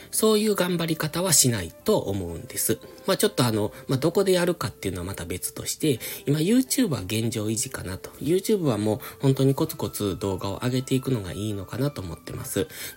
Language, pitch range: Japanese, 105-155 Hz